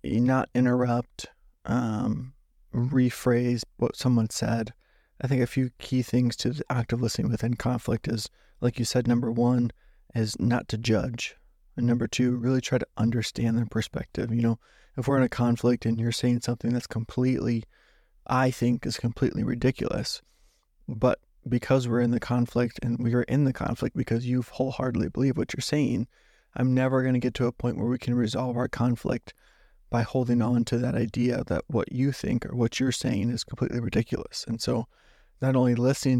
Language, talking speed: English, 185 wpm